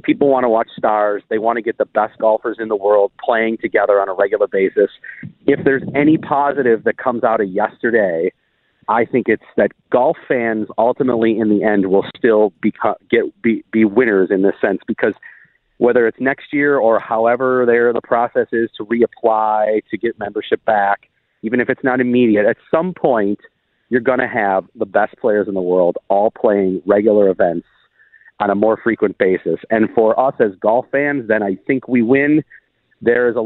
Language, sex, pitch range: English, male, 110-130 Hz